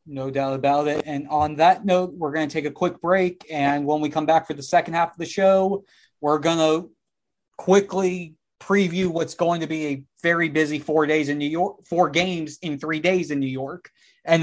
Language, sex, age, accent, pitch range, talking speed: English, male, 30-49, American, 155-185 Hz, 220 wpm